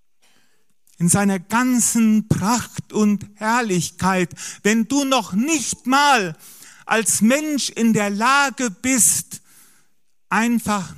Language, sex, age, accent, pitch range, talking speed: German, male, 50-69, German, 170-225 Hz, 100 wpm